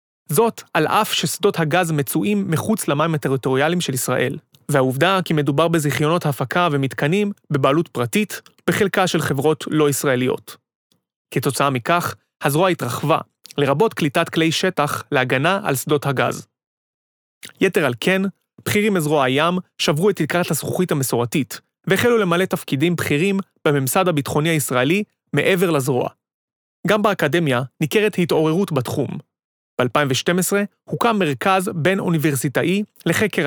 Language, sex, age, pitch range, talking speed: Hebrew, male, 30-49, 145-190 Hz, 120 wpm